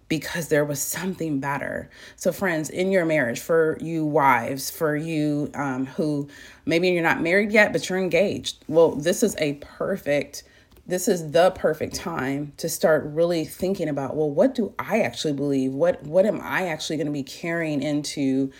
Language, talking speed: English, 180 wpm